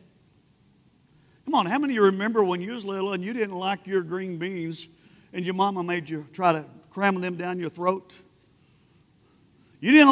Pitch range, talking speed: 200-285 Hz, 190 wpm